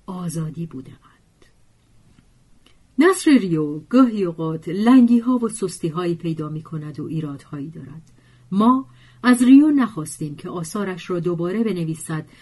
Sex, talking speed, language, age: female, 130 wpm, Persian, 40-59